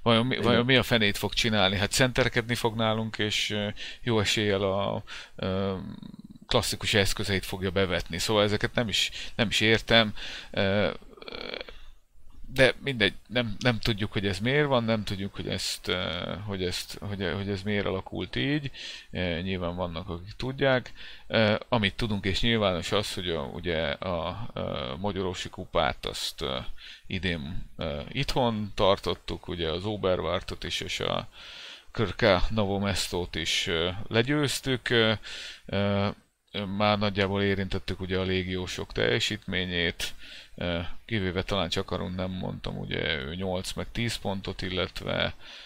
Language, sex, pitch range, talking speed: Hungarian, male, 90-110 Hz, 125 wpm